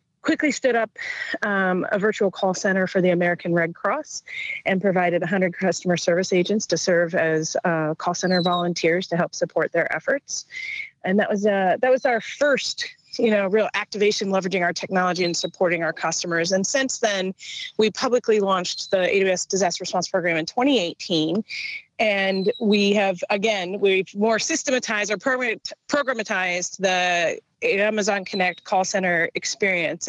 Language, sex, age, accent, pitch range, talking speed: English, female, 30-49, American, 180-220 Hz, 155 wpm